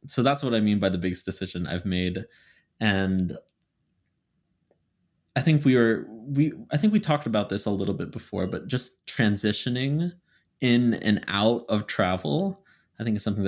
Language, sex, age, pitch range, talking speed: English, male, 20-39, 95-130 Hz, 175 wpm